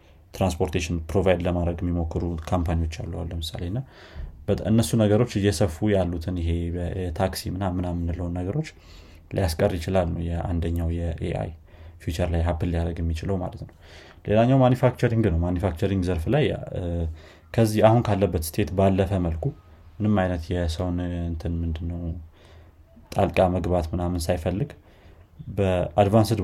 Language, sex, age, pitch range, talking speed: Amharic, male, 30-49, 85-95 Hz, 100 wpm